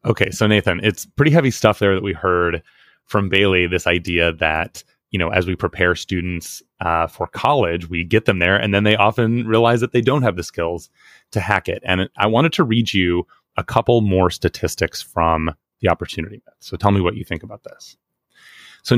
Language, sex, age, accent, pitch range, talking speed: English, male, 30-49, American, 90-125 Hz, 205 wpm